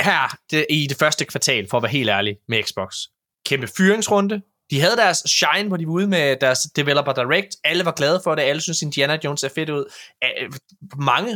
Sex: male